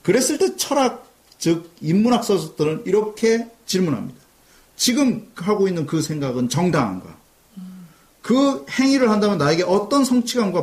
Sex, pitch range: male, 165-245 Hz